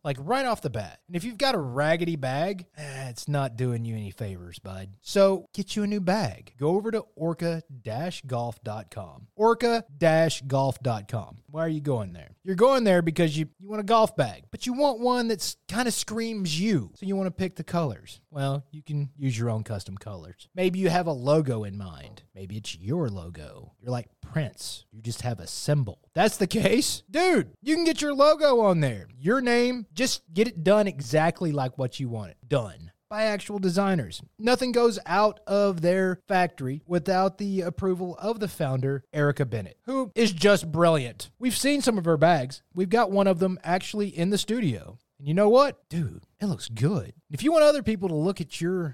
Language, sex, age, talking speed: English, male, 30-49, 205 wpm